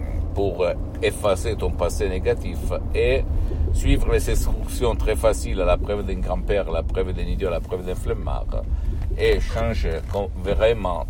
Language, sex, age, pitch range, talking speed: Italian, male, 50-69, 80-95 Hz, 155 wpm